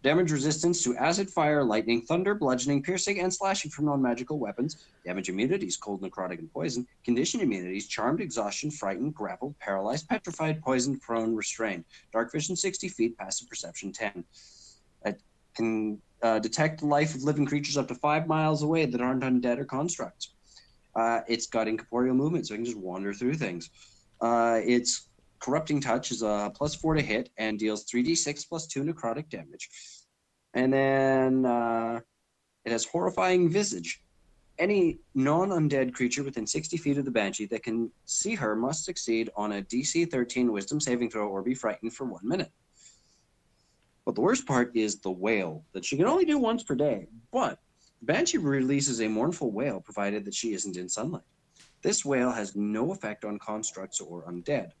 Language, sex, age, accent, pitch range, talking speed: English, male, 30-49, American, 110-150 Hz, 175 wpm